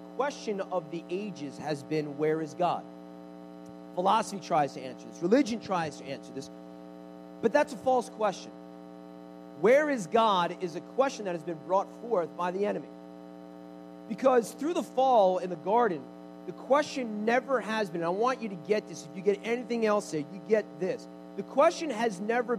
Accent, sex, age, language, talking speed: American, male, 40-59, English, 185 wpm